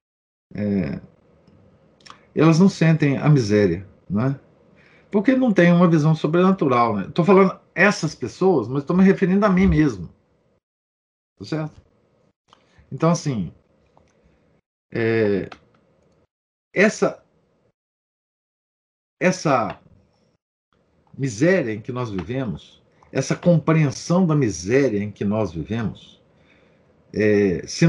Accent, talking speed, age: Brazilian, 95 wpm, 50-69